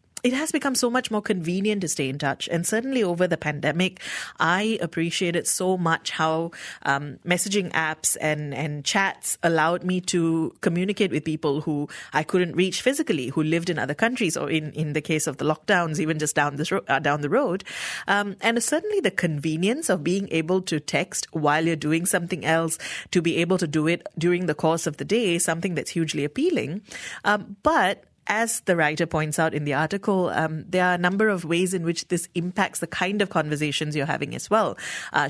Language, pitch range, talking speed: English, 155-190 Hz, 205 wpm